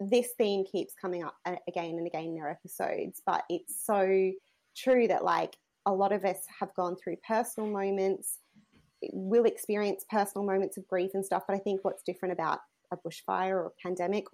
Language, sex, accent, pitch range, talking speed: English, female, Australian, 180-205 Hz, 185 wpm